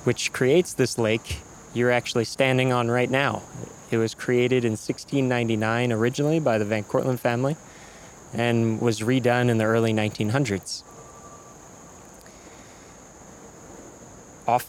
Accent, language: American, English